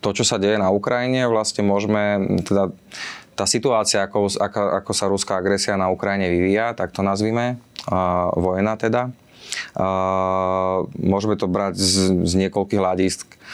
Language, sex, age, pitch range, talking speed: Slovak, male, 20-39, 90-100 Hz, 140 wpm